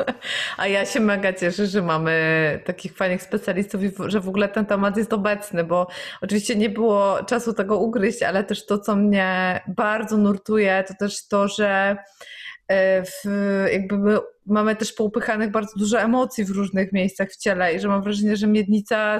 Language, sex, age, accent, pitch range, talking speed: Polish, female, 20-39, native, 190-220 Hz, 175 wpm